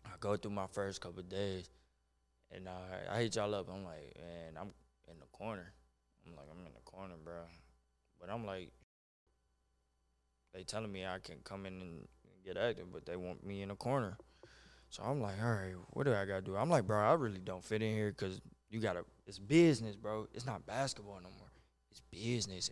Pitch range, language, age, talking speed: 80-105 Hz, English, 20-39, 220 wpm